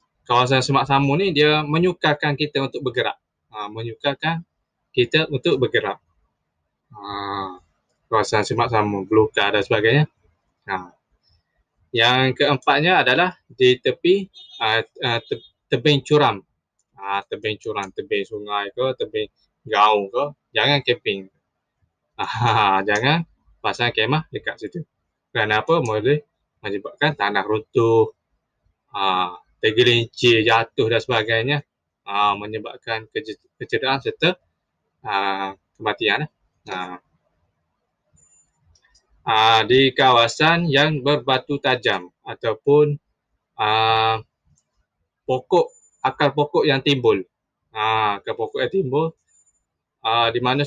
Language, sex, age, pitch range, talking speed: Malay, male, 20-39, 110-145 Hz, 95 wpm